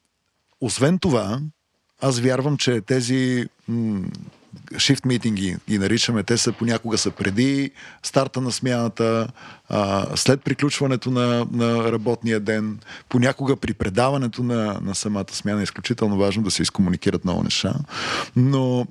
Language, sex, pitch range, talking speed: Bulgarian, male, 110-135 Hz, 125 wpm